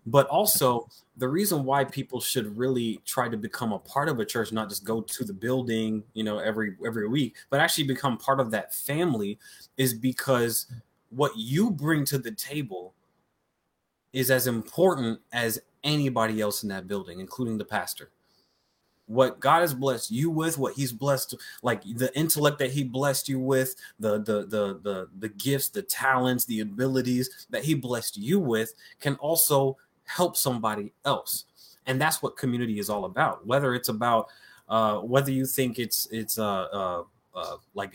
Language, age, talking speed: English, 20-39, 175 wpm